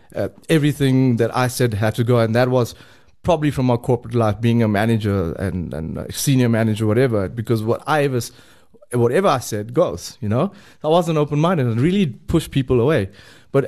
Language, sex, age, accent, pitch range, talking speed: English, male, 20-39, South African, 110-135 Hz, 195 wpm